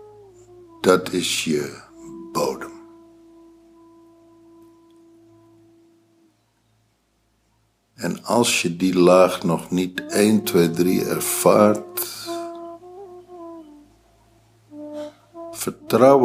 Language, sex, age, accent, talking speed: Dutch, male, 60-79, Dutch, 60 wpm